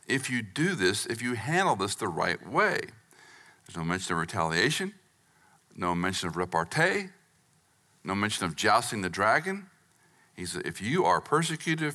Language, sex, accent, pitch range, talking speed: English, male, American, 95-150 Hz, 160 wpm